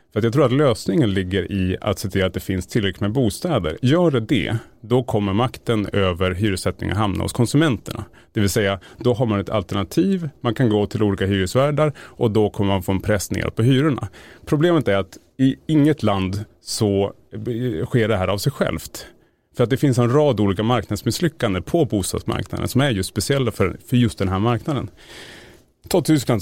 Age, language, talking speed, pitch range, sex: 30-49, Swedish, 190 wpm, 100-130 Hz, male